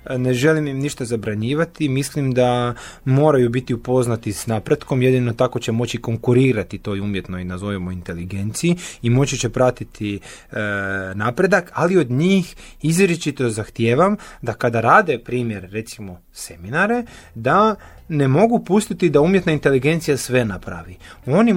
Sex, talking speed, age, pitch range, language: male, 135 wpm, 30-49, 115-165 Hz, Croatian